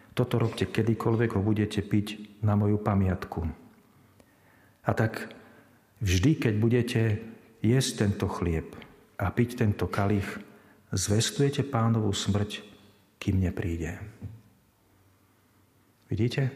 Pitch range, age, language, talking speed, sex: 100-115 Hz, 40-59, Slovak, 100 wpm, male